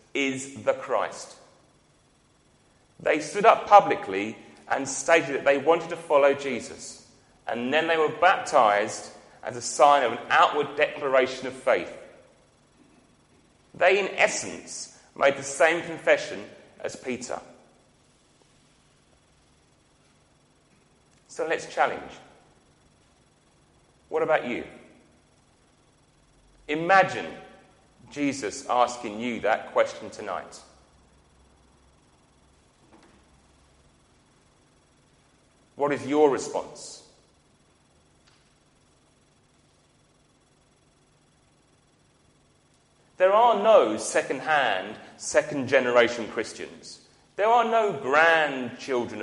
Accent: British